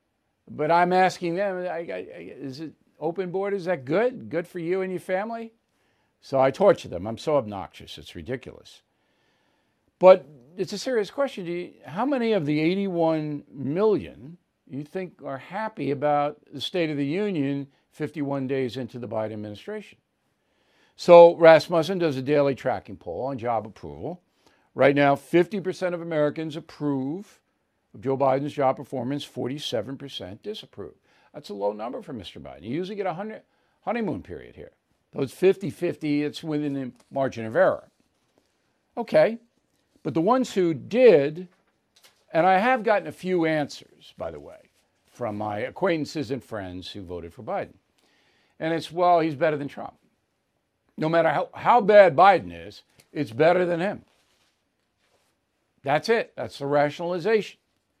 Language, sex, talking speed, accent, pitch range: English, male, 150 wpm, American, 135-185 Hz